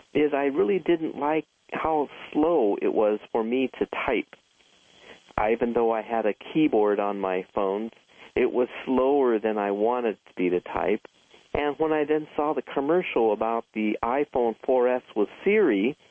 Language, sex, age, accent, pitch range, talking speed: English, male, 50-69, American, 110-150 Hz, 170 wpm